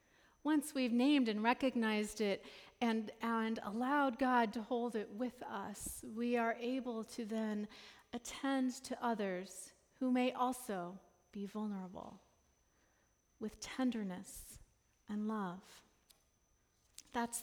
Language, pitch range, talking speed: English, 210-255 Hz, 115 wpm